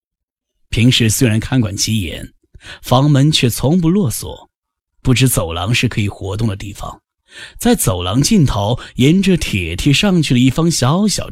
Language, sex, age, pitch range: Chinese, male, 10-29, 95-140 Hz